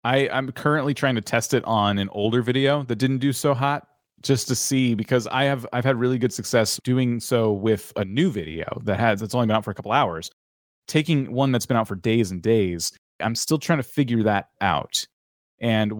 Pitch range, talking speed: 110-140 Hz, 225 wpm